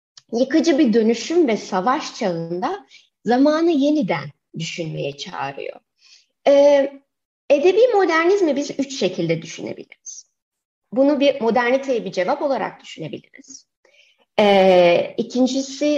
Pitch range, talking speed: 195-275 Hz, 90 wpm